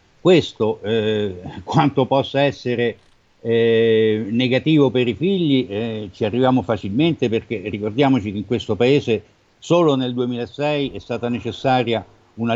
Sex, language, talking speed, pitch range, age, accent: male, Italian, 130 wpm, 110-135 Hz, 60-79, native